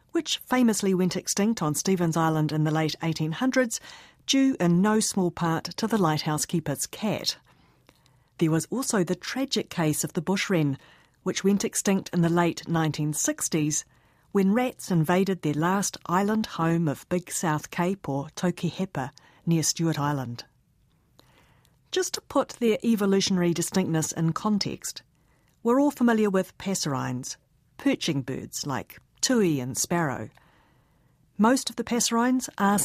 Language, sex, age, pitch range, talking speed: English, female, 50-69, 150-205 Hz, 140 wpm